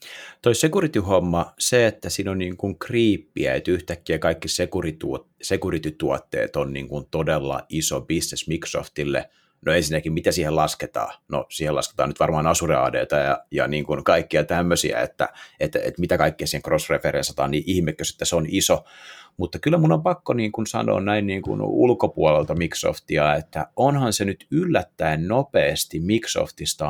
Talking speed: 160 wpm